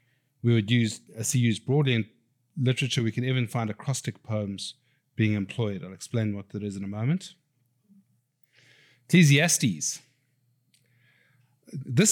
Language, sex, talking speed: English, male, 135 wpm